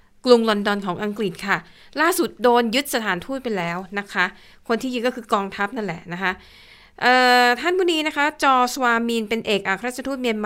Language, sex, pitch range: Thai, female, 195-250 Hz